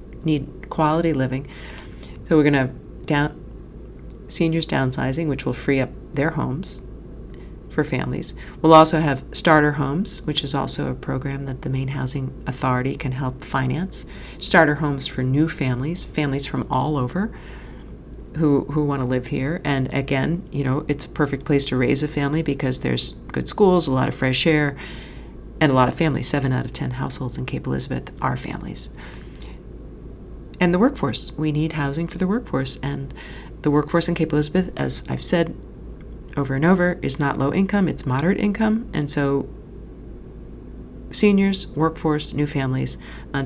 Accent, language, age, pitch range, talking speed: American, English, 40-59, 135-160 Hz, 170 wpm